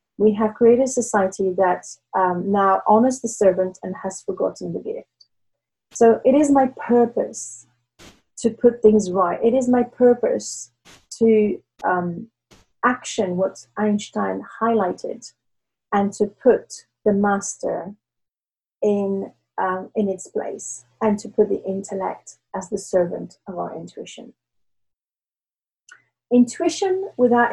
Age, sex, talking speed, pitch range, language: 30-49, female, 125 wpm, 190-235 Hz, English